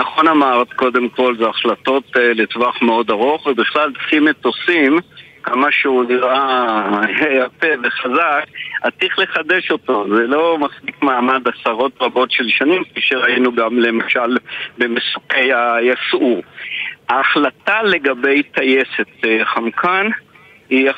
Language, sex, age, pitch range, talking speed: Hebrew, male, 50-69, 120-160 Hz, 115 wpm